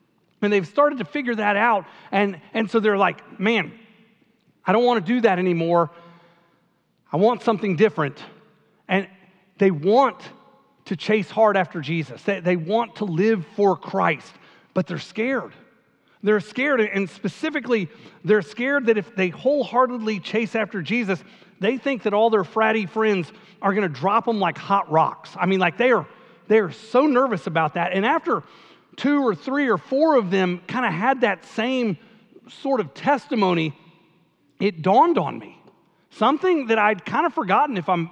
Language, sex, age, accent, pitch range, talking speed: English, male, 40-59, American, 185-245 Hz, 175 wpm